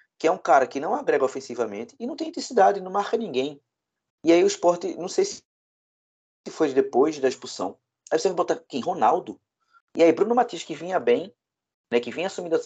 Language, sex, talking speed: Portuguese, male, 205 wpm